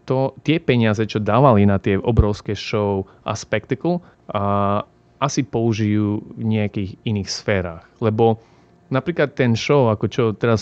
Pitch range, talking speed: 95-115 Hz, 130 wpm